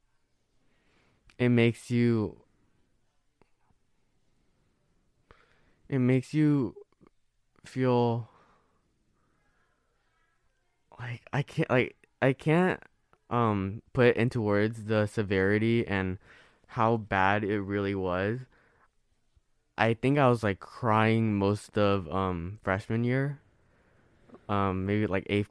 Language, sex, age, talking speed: English, male, 20-39, 95 wpm